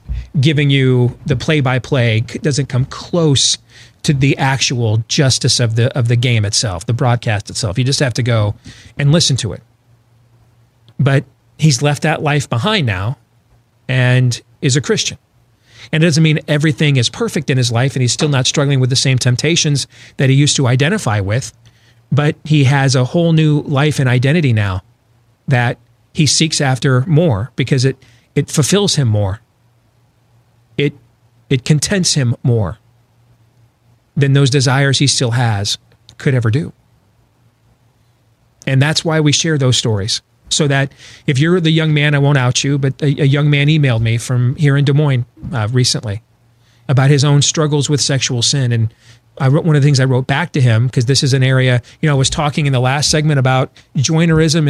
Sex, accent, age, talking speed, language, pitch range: male, American, 40-59, 180 wpm, English, 120-145 Hz